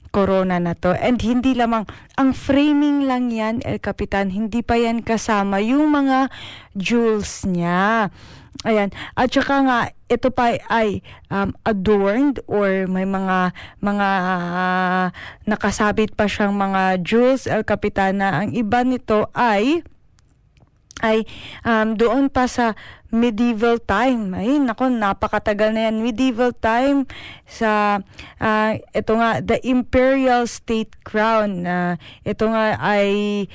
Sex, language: female, Filipino